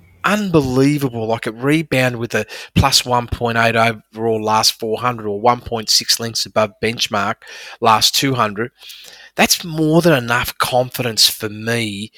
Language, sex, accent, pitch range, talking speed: English, male, Australian, 115-150 Hz, 125 wpm